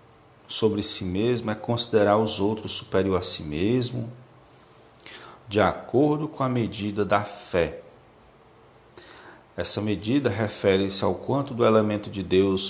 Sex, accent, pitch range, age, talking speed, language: male, Brazilian, 100-115 Hz, 40-59, 130 wpm, Portuguese